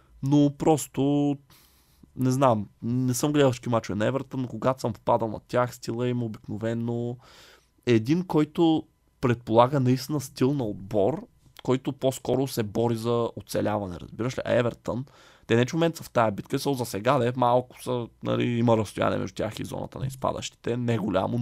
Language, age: Bulgarian, 20-39